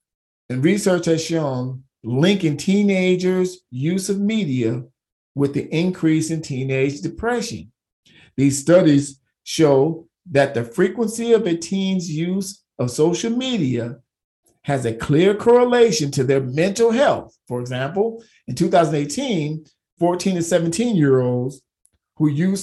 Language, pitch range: English, 130-185 Hz